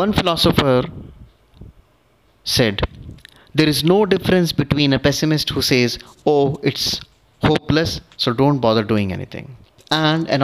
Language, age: English, 30-49